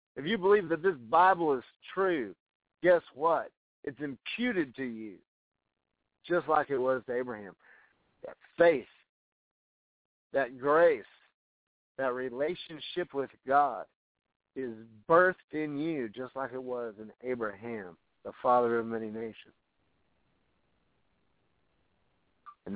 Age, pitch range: 50-69, 120-150 Hz